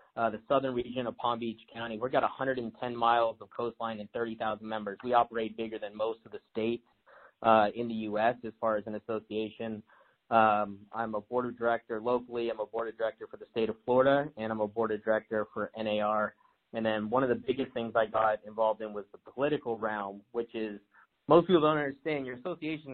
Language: English